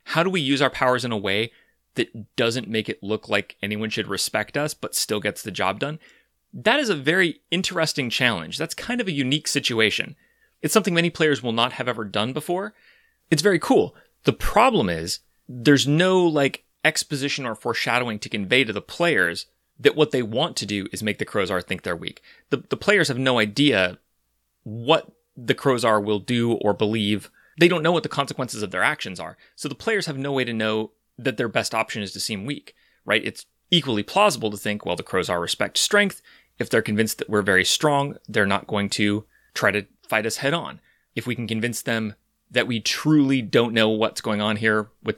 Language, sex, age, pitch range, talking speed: English, male, 30-49, 105-145 Hz, 215 wpm